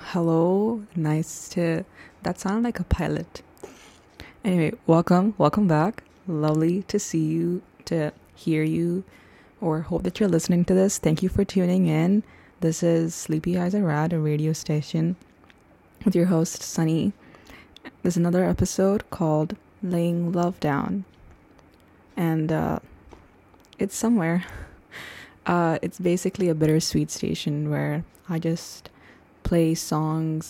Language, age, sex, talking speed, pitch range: English, 20-39, female, 130 wpm, 160-180 Hz